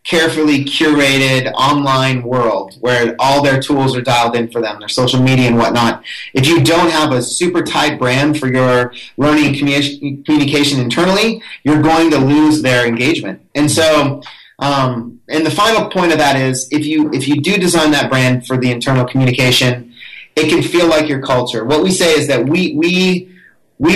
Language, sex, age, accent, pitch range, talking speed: English, male, 30-49, American, 125-155 Hz, 185 wpm